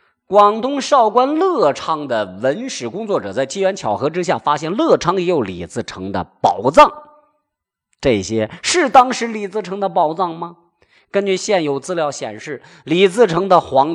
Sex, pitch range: male, 135-200 Hz